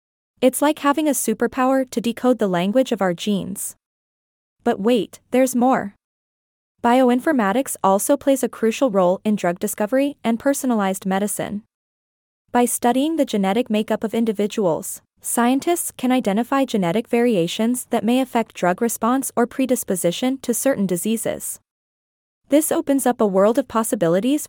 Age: 20-39